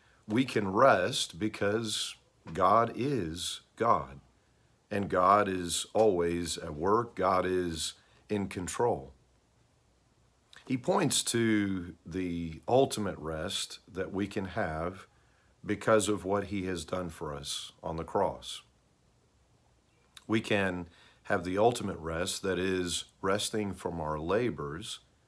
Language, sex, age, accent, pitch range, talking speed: English, male, 50-69, American, 80-105 Hz, 120 wpm